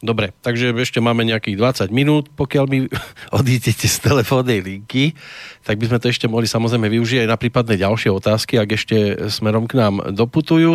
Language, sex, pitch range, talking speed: Slovak, male, 105-125 Hz, 180 wpm